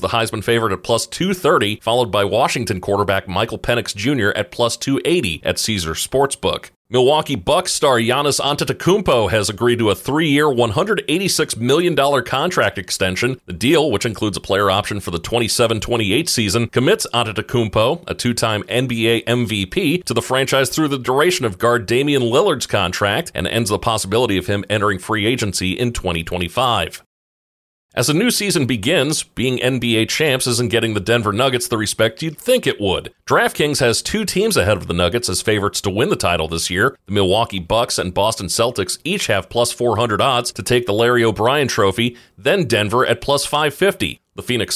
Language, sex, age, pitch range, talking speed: English, male, 40-59, 105-130 Hz, 175 wpm